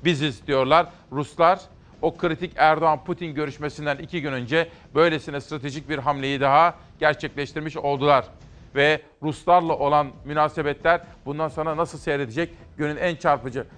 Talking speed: 125 wpm